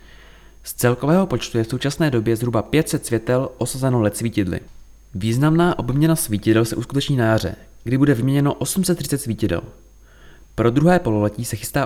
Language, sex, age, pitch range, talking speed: Czech, male, 20-39, 105-140 Hz, 150 wpm